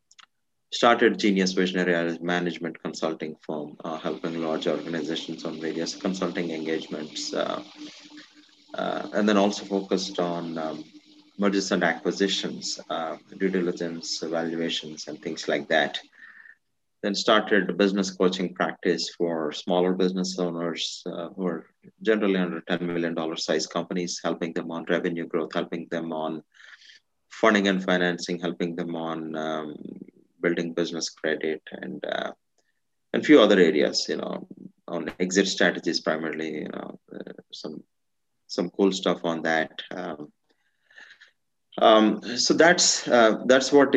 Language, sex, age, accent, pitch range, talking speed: English, male, 30-49, Indian, 85-100 Hz, 130 wpm